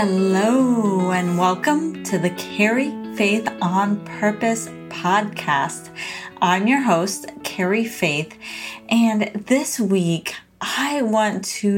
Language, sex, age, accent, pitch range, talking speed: English, female, 30-49, American, 175-220 Hz, 105 wpm